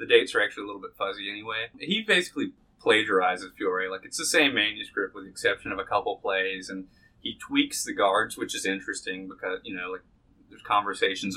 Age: 30-49